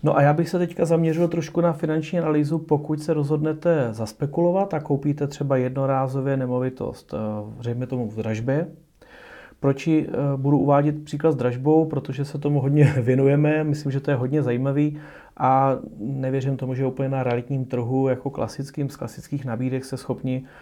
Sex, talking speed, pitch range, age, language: male, 165 wpm, 120-155 Hz, 30-49, Czech